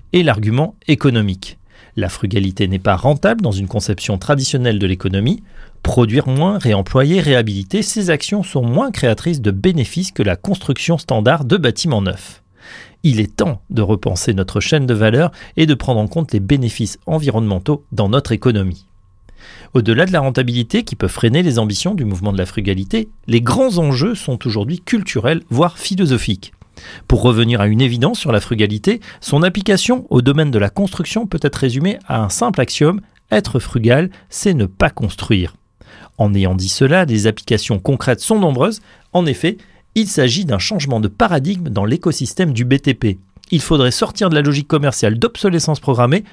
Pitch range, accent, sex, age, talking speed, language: 105-165 Hz, French, male, 40-59, 170 wpm, French